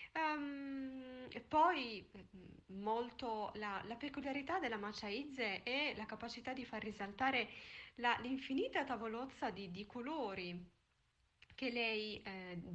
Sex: female